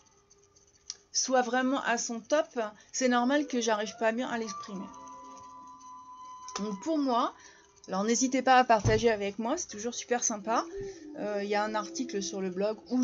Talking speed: 170 wpm